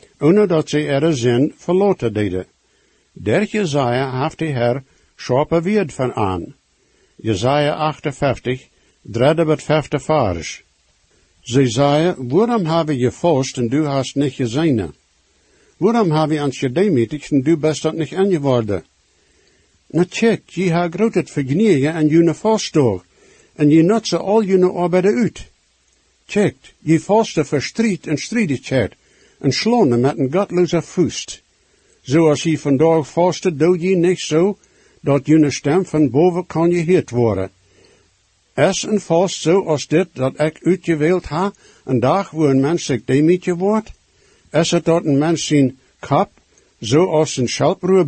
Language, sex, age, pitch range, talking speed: English, male, 60-79, 135-180 Hz, 150 wpm